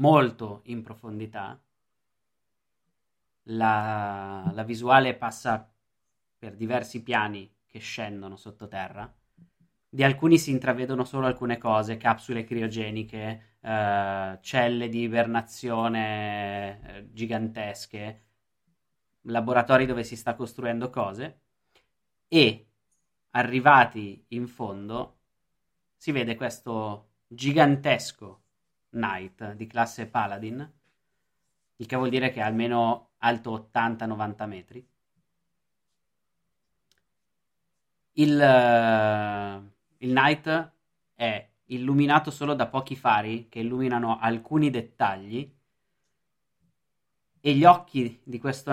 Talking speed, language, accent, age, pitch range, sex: 90 wpm, Italian, native, 20-39, 110-130 Hz, male